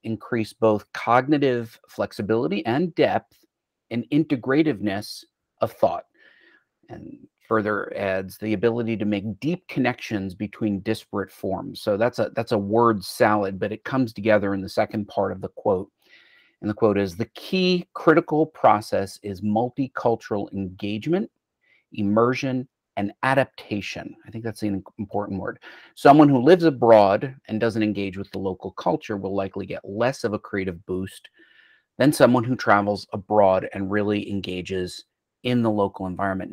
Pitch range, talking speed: 100-130 Hz, 150 wpm